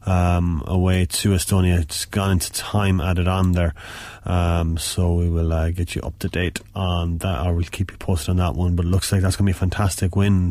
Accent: Irish